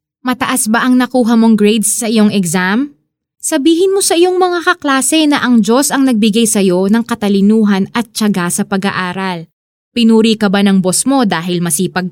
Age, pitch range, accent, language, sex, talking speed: 20-39, 190-250 Hz, native, Filipino, female, 180 wpm